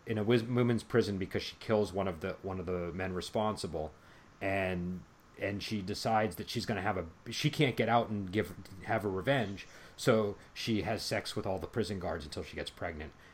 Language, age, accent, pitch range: English, 40-59, American, 90-115 Hz